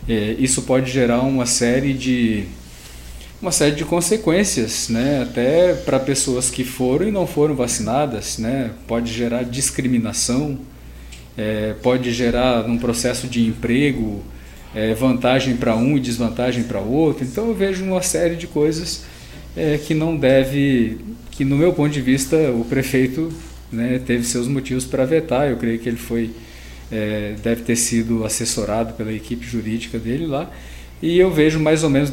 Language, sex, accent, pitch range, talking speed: Portuguese, male, Brazilian, 115-135 Hz, 150 wpm